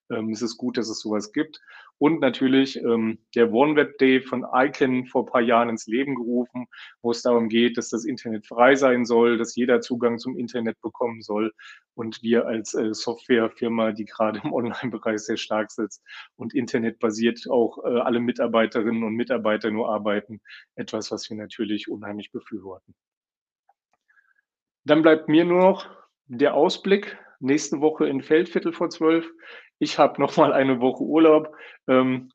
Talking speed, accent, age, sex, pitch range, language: 165 wpm, German, 30-49, male, 115-135 Hz, German